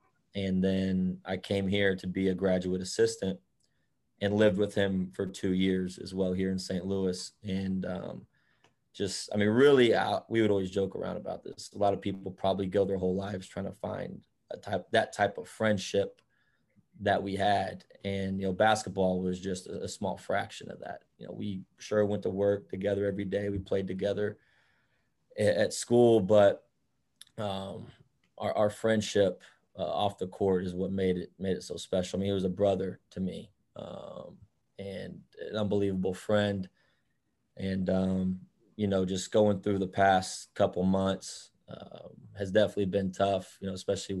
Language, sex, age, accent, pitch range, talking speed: English, male, 20-39, American, 95-100 Hz, 180 wpm